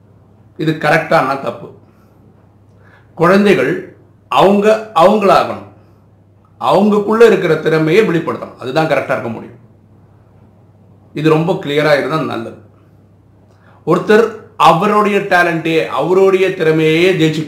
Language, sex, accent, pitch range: Tamil, male, native, 105-165 Hz